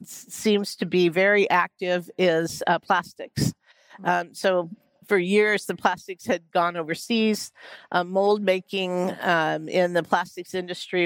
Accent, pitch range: American, 170-195 Hz